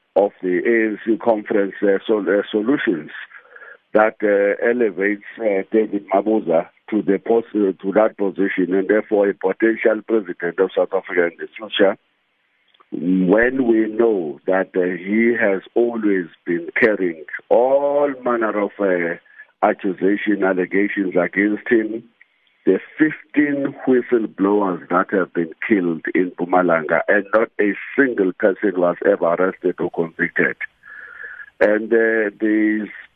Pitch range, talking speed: 95-115 Hz, 125 wpm